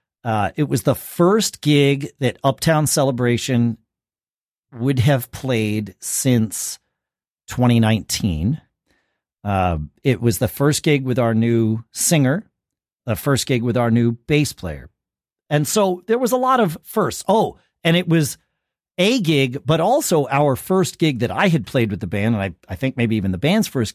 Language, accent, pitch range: English, American, 115-175 Hz